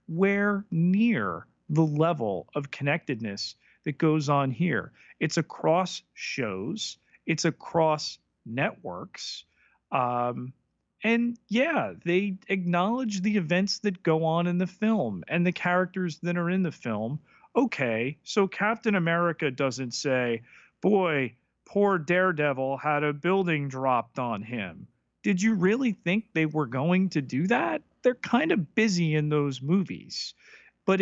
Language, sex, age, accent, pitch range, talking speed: English, male, 40-59, American, 145-200 Hz, 135 wpm